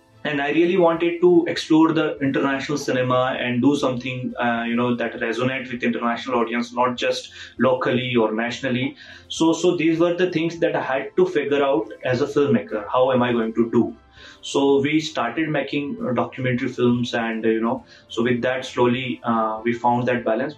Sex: male